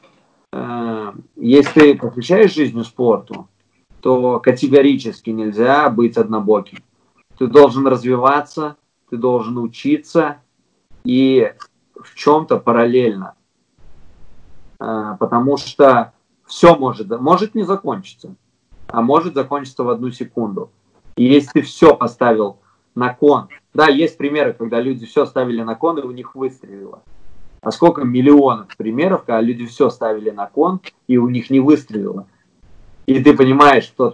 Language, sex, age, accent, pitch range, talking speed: Russian, male, 20-39, native, 110-140 Hz, 130 wpm